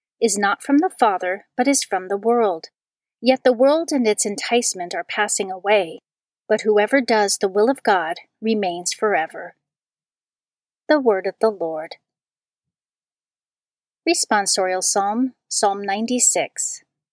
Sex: female